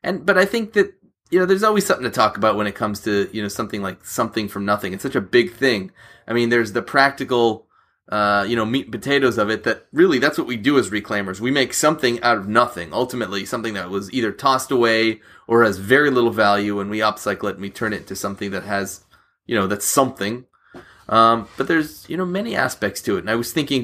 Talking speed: 245 wpm